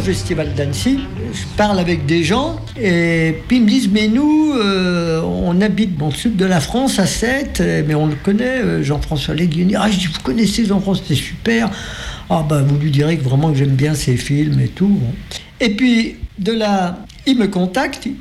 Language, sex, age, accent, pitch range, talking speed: French, male, 60-79, French, 155-210 Hz, 200 wpm